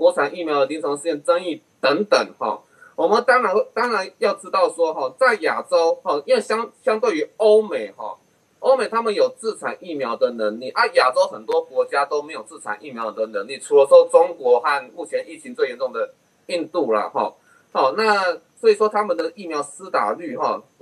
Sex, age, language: male, 20-39, Chinese